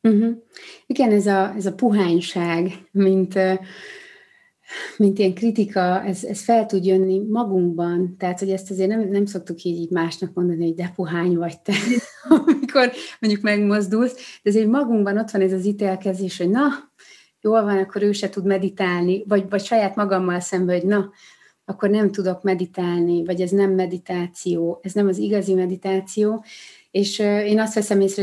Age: 30-49